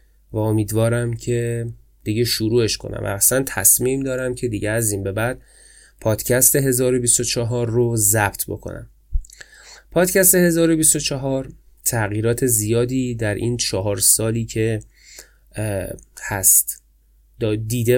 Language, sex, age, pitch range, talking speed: Persian, male, 20-39, 105-125 Hz, 105 wpm